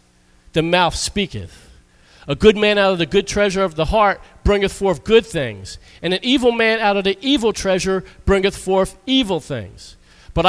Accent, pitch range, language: American, 145-200 Hz, English